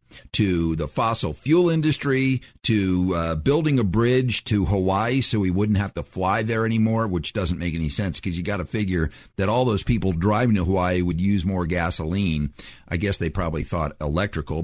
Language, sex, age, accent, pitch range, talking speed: English, male, 50-69, American, 90-125 Hz, 190 wpm